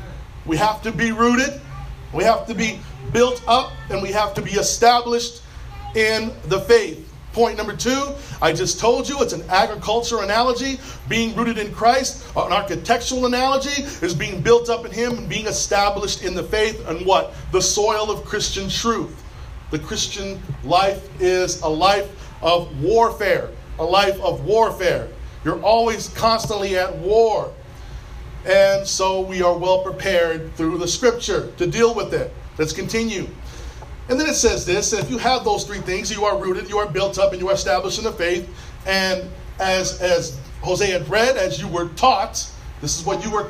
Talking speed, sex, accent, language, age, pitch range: 180 wpm, male, American, English, 40-59, 185-230 Hz